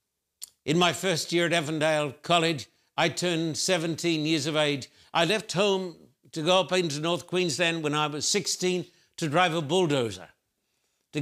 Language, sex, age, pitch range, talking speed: English, male, 60-79, 150-180 Hz, 165 wpm